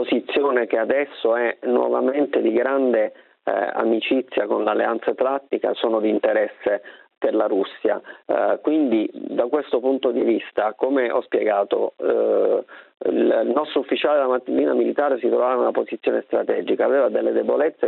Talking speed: 150 wpm